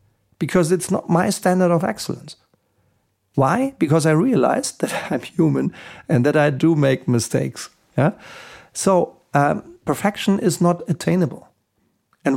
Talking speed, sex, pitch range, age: 135 wpm, male, 145-185 Hz, 50-69